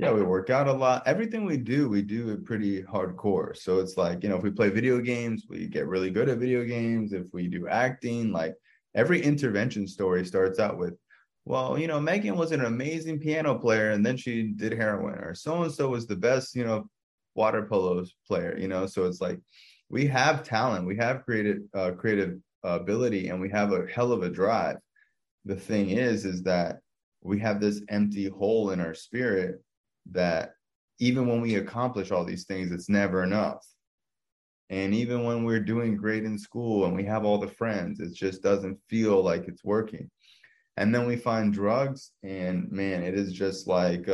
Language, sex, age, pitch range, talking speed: English, male, 20-39, 95-120 Hz, 200 wpm